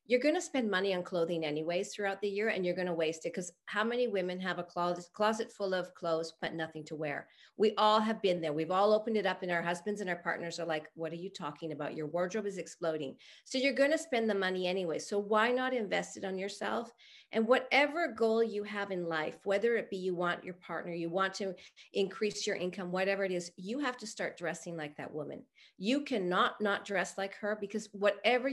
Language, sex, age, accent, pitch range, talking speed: English, female, 40-59, American, 175-220 Hz, 230 wpm